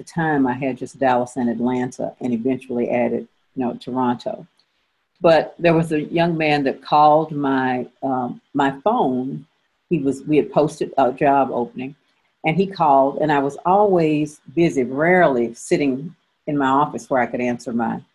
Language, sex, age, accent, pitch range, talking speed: English, female, 50-69, American, 125-165 Hz, 175 wpm